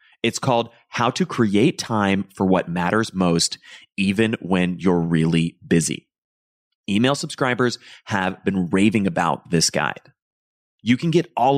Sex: male